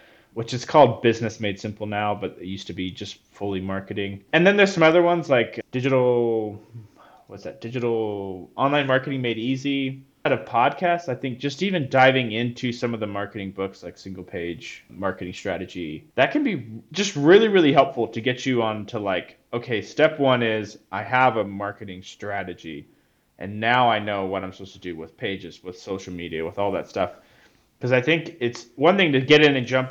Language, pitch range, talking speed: English, 95-130 Hz, 200 wpm